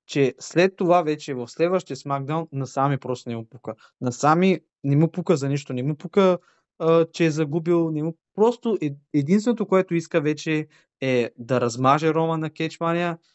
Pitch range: 130-165 Hz